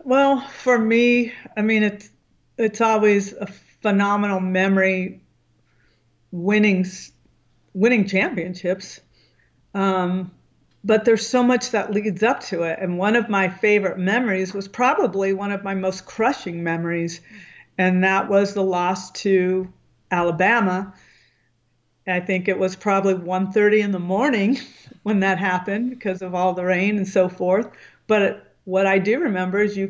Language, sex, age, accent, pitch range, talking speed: English, female, 50-69, American, 185-210 Hz, 145 wpm